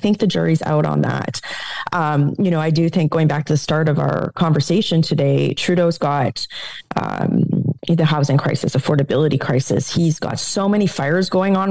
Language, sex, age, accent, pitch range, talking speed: English, female, 30-49, American, 150-180 Hz, 185 wpm